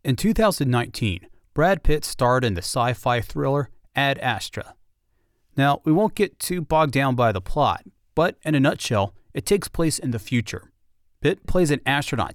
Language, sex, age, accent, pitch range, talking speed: English, male, 30-49, American, 110-155 Hz, 170 wpm